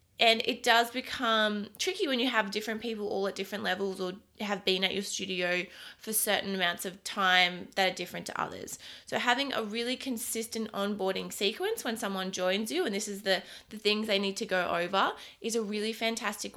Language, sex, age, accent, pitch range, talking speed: English, female, 20-39, Australian, 185-225 Hz, 205 wpm